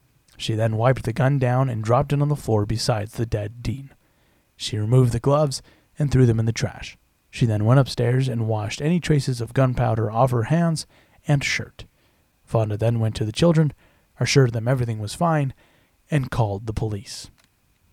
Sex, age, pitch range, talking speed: male, 30-49, 115-140 Hz, 185 wpm